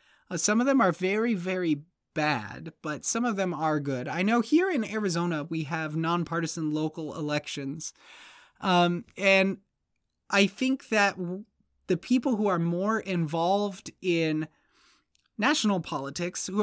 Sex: male